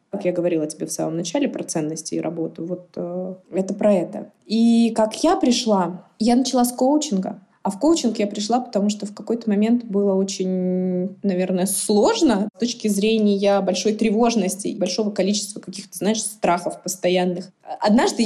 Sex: female